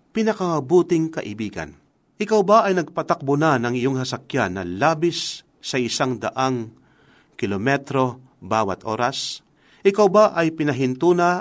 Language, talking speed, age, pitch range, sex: Filipino, 120 wpm, 50-69, 130-180 Hz, male